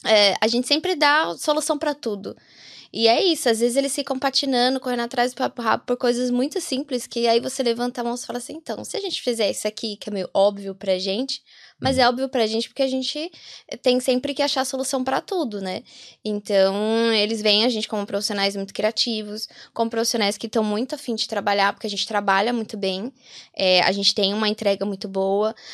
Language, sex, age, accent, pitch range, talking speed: Portuguese, female, 10-29, Brazilian, 200-245 Hz, 220 wpm